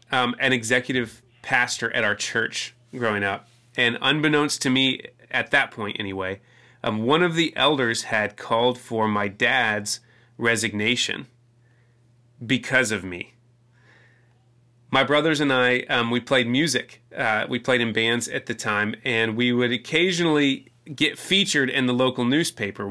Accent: American